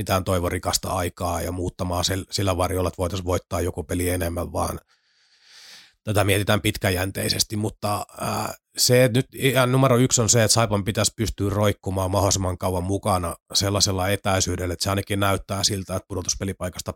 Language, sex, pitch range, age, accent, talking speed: Finnish, male, 90-110 Hz, 30-49, native, 150 wpm